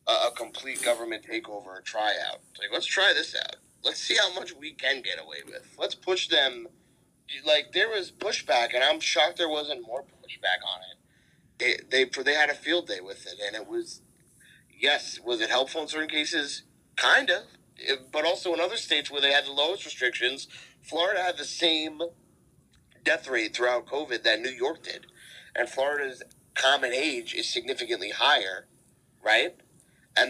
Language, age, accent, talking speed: English, 30-49, American, 180 wpm